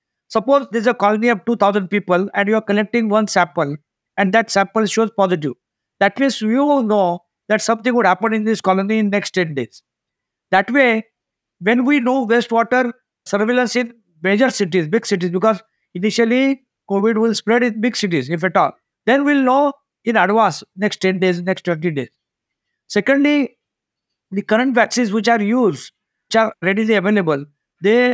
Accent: Indian